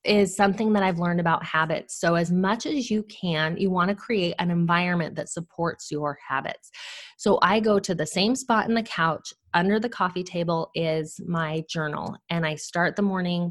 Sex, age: female, 20-39